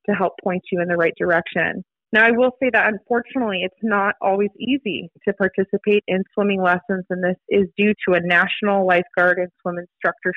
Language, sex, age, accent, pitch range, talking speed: English, female, 30-49, American, 185-225 Hz, 195 wpm